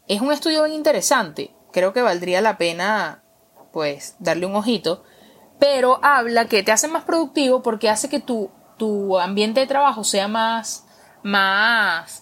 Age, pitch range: 20-39, 185-250 Hz